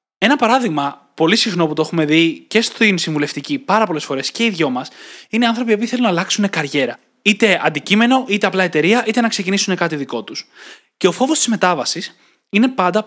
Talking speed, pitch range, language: 195 wpm, 160-225 Hz, Greek